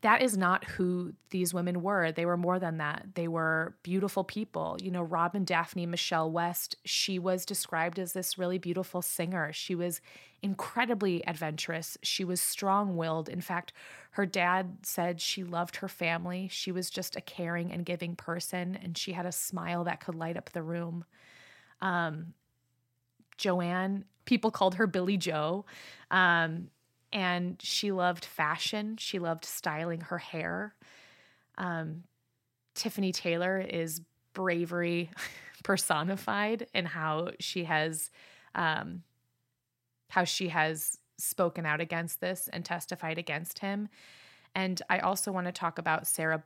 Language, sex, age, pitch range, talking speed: English, female, 20-39, 165-185 Hz, 145 wpm